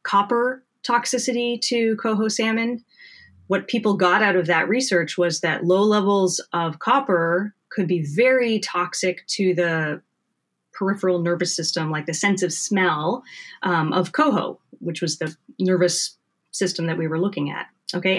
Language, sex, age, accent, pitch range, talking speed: English, female, 30-49, American, 170-220 Hz, 150 wpm